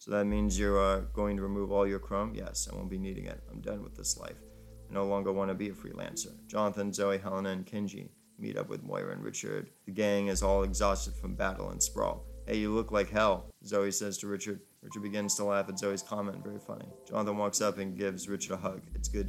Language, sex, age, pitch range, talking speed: English, male, 30-49, 95-105 Hz, 240 wpm